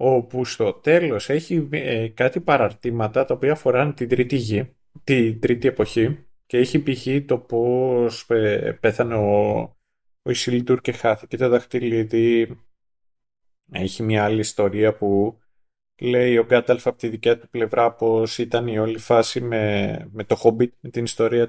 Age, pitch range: 30-49, 110-130 Hz